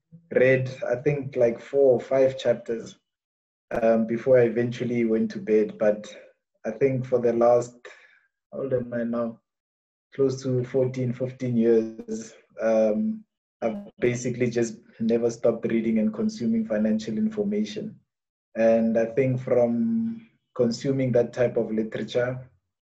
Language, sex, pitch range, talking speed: English, male, 110-125 Hz, 135 wpm